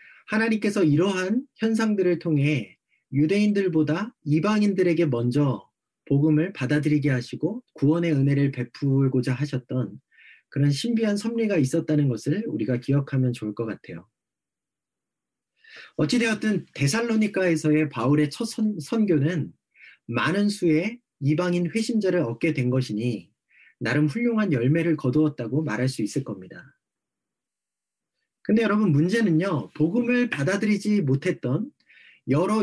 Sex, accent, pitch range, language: male, native, 145-210 Hz, Korean